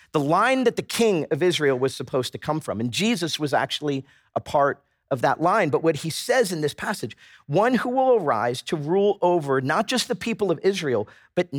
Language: English